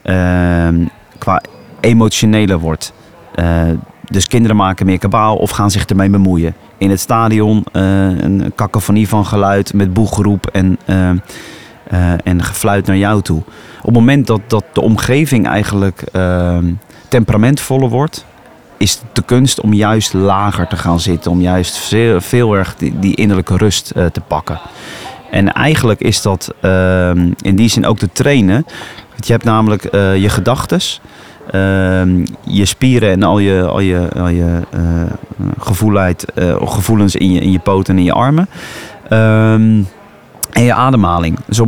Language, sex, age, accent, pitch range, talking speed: Dutch, male, 40-59, Dutch, 95-115 Hz, 160 wpm